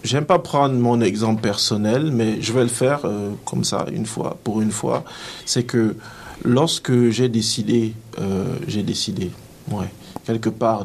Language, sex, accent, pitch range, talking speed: French, male, French, 110-130 Hz, 165 wpm